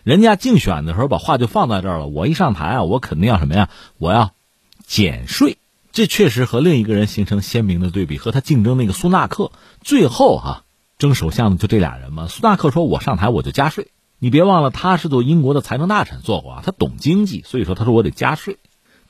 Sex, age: male, 50-69